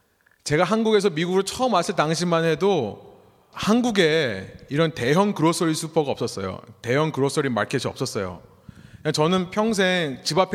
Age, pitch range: 30-49, 125-190 Hz